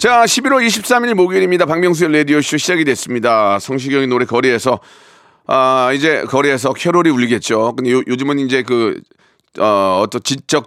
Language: Korean